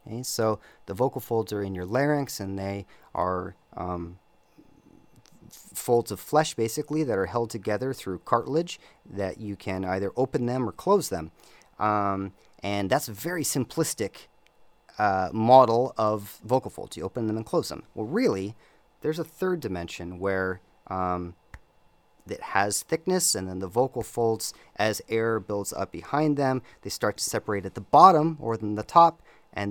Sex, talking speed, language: male, 170 wpm, English